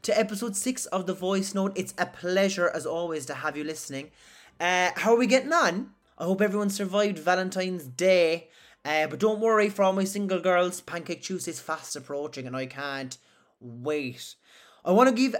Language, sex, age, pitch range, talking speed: English, male, 30-49, 155-195 Hz, 195 wpm